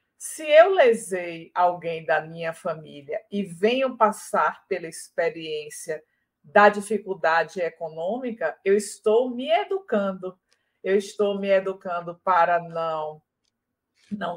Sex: female